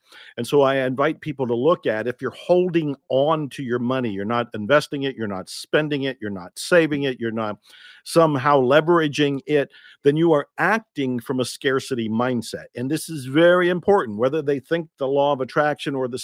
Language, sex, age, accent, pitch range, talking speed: English, male, 50-69, American, 135-165 Hz, 200 wpm